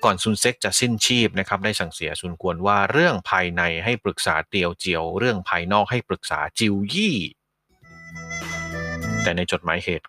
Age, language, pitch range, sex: 30-49, Thai, 85-105 Hz, male